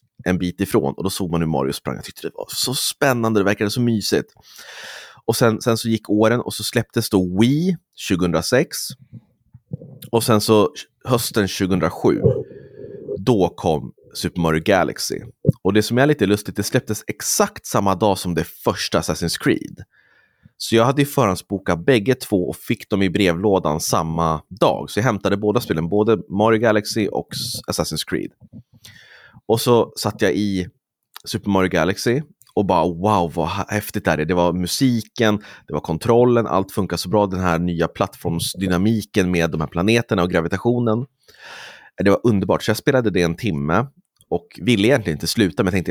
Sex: male